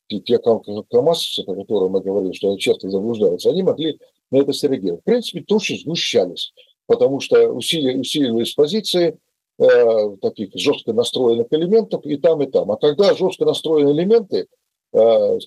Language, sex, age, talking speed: Russian, male, 50-69, 145 wpm